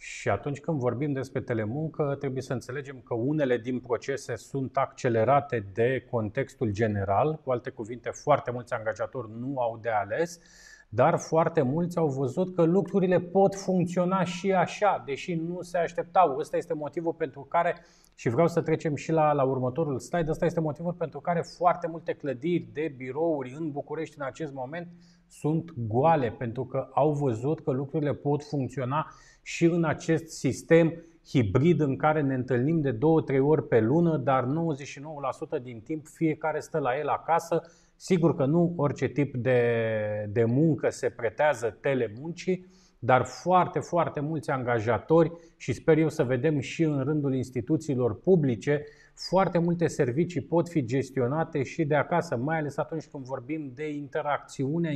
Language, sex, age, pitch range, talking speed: Romanian, male, 30-49, 130-165 Hz, 160 wpm